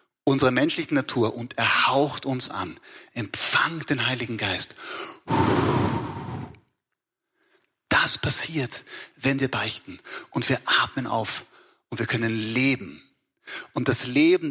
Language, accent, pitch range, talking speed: German, German, 120-155 Hz, 115 wpm